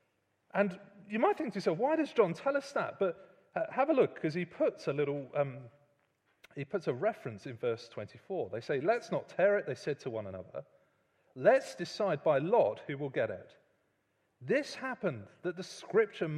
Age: 30-49